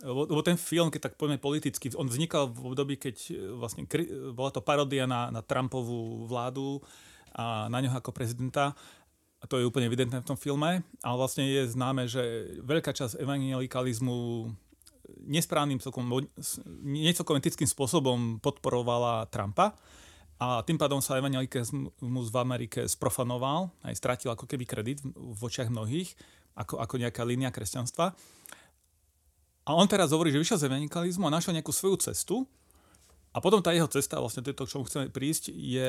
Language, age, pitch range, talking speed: Slovak, 30-49, 125-150 Hz, 155 wpm